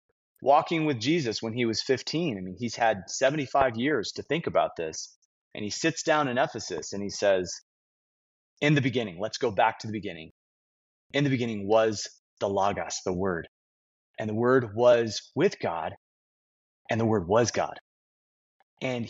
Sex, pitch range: male, 100-145 Hz